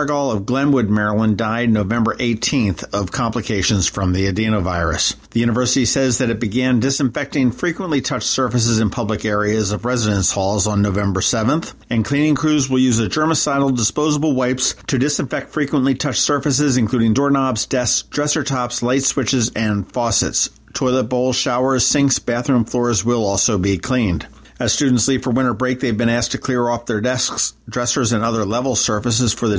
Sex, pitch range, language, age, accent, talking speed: male, 105-130 Hz, English, 50-69, American, 170 wpm